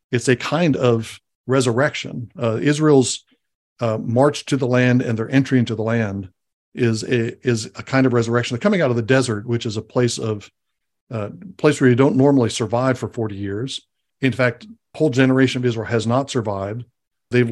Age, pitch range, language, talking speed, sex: 60-79, 110-130 Hz, English, 190 wpm, male